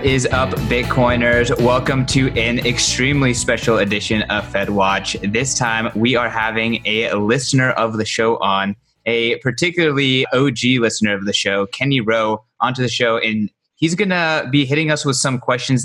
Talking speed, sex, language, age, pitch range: 170 wpm, male, English, 20-39, 110-130 Hz